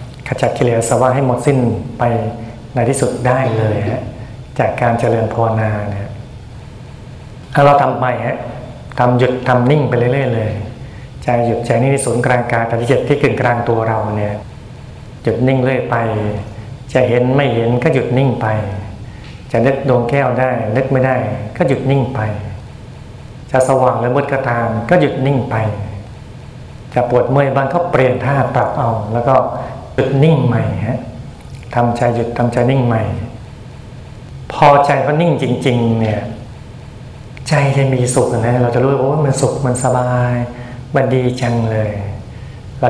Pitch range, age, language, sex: 115-130 Hz, 60-79, Thai, male